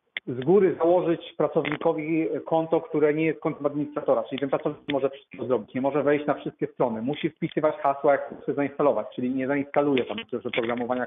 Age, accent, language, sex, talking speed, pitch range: 40-59, native, Polish, male, 185 wpm, 140-170 Hz